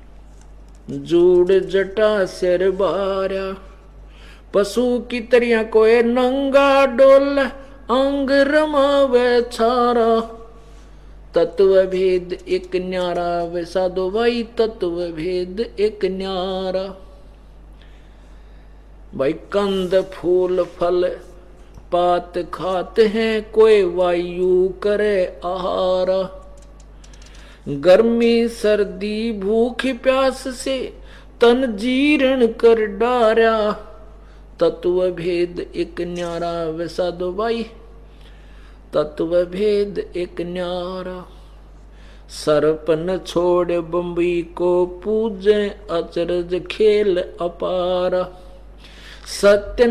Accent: native